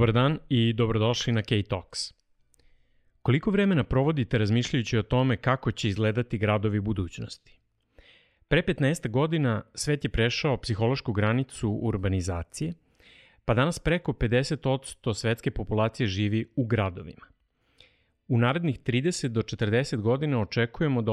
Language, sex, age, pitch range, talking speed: English, male, 40-59, 110-135 Hz, 120 wpm